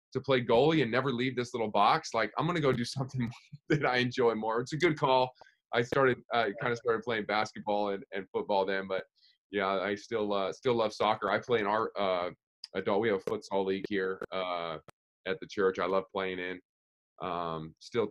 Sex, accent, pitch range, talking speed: male, American, 100-130 Hz, 215 wpm